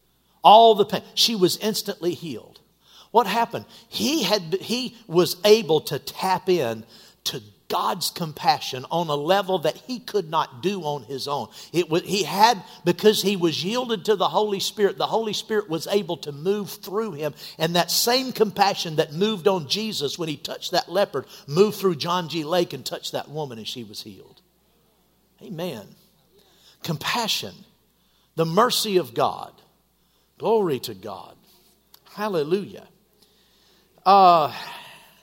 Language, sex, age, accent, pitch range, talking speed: English, male, 50-69, American, 145-200 Hz, 150 wpm